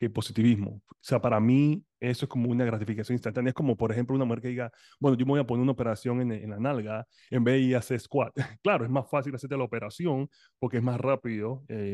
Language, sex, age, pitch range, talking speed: Spanish, male, 30-49, 105-125 Hz, 250 wpm